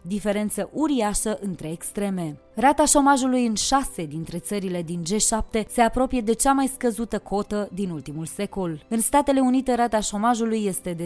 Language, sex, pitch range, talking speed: Romanian, female, 185-245 Hz, 155 wpm